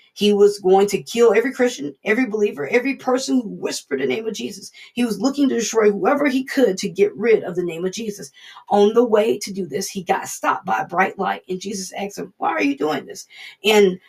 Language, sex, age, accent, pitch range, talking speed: English, female, 40-59, American, 195-255 Hz, 240 wpm